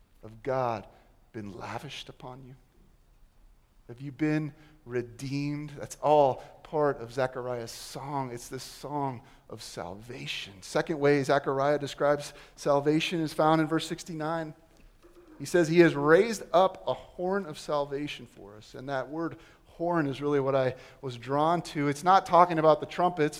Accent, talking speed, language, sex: American, 155 wpm, English, male